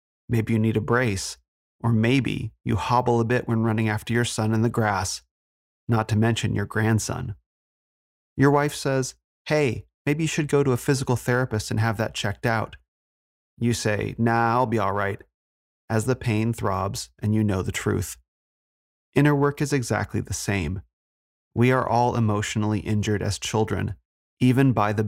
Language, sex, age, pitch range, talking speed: English, male, 30-49, 100-120 Hz, 175 wpm